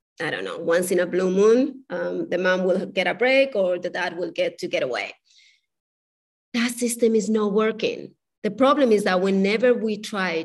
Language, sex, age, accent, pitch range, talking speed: English, female, 30-49, Spanish, 185-225 Hz, 200 wpm